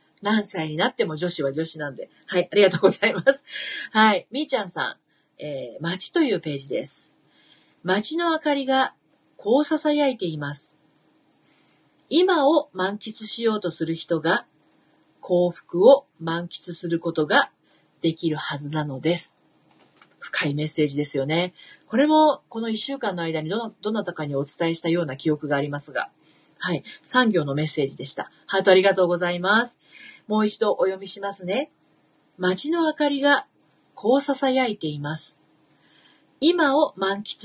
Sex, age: female, 40-59